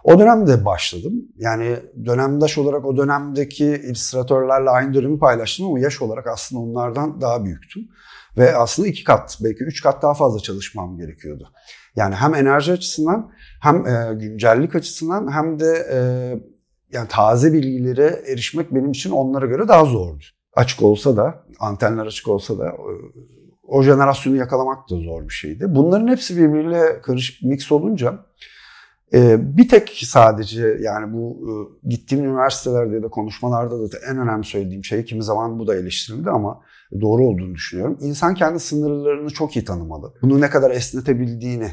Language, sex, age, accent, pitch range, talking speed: Turkish, male, 50-69, native, 110-145 Hz, 150 wpm